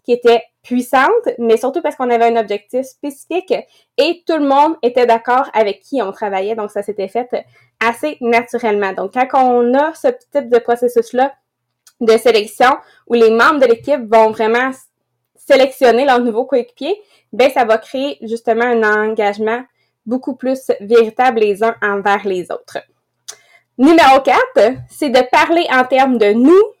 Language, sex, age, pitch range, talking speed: English, female, 20-39, 225-275 Hz, 160 wpm